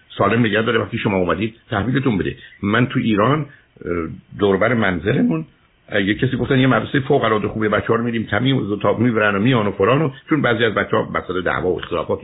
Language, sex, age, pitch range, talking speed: Persian, male, 60-79, 105-135 Hz, 180 wpm